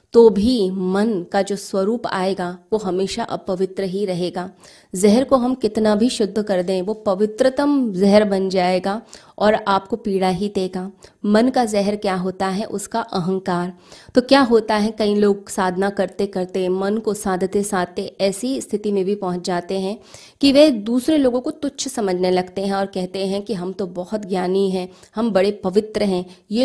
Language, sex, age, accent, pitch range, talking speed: Hindi, female, 20-39, native, 190-220 Hz, 180 wpm